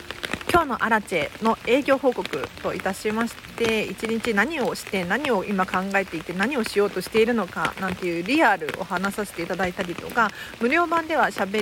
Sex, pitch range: female, 195-250 Hz